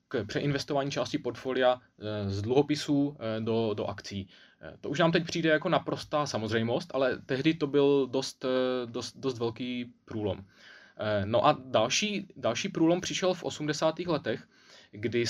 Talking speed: 135 wpm